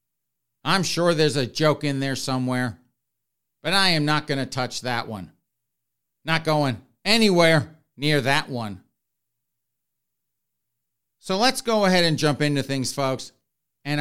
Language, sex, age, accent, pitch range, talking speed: English, male, 50-69, American, 130-175 Hz, 140 wpm